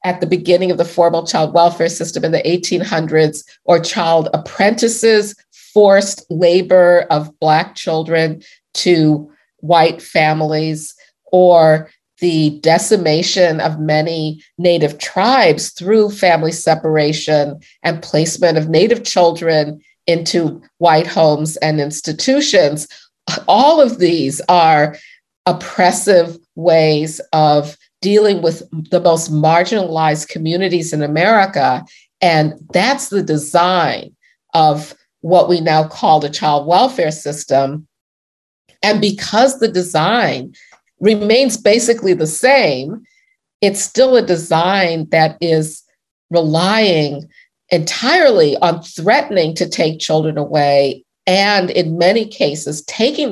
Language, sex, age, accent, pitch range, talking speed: English, female, 50-69, American, 155-190 Hz, 110 wpm